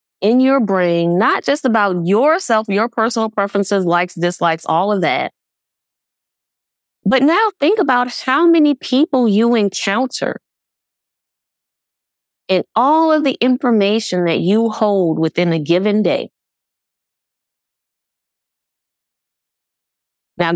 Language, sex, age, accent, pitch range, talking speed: English, female, 30-49, American, 190-305 Hz, 110 wpm